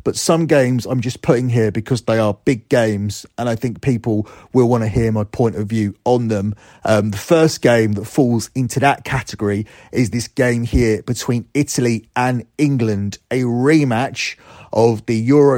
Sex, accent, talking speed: male, British, 185 wpm